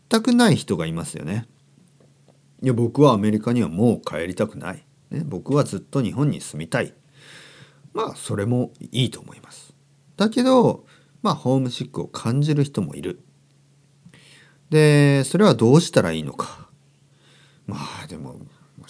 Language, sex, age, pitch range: Japanese, male, 40-59, 110-145 Hz